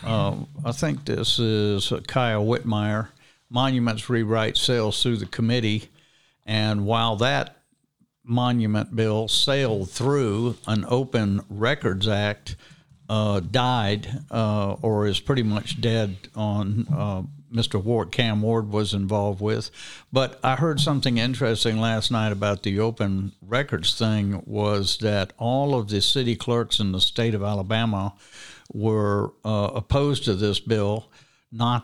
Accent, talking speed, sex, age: American, 140 wpm, male, 60-79